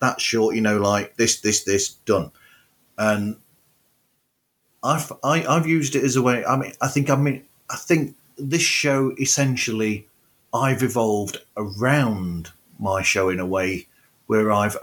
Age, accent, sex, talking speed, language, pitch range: 40-59, British, male, 160 wpm, English, 105-135 Hz